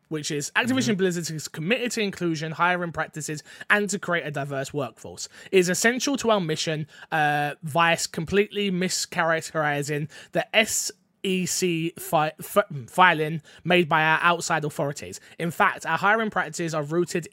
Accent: British